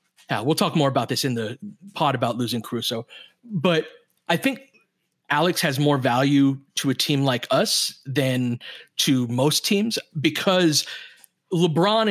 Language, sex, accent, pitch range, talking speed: English, male, American, 140-180 Hz, 150 wpm